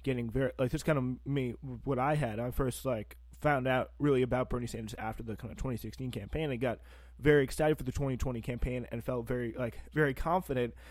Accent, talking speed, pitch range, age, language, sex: American, 215 wpm, 115-135 Hz, 20-39, English, male